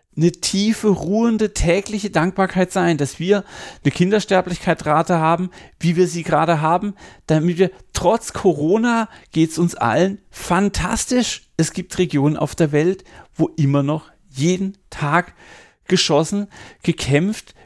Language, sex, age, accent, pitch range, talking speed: German, male, 40-59, German, 135-180 Hz, 130 wpm